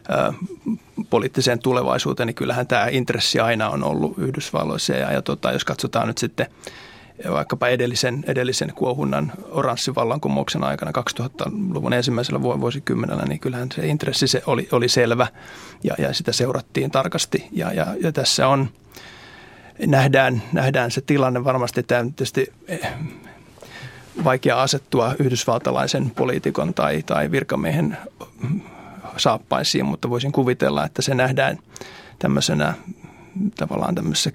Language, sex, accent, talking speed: Finnish, male, native, 105 wpm